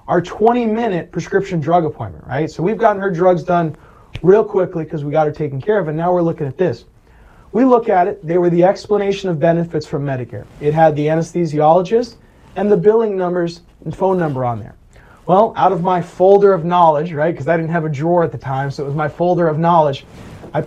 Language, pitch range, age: English, 155-200 Hz, 30-49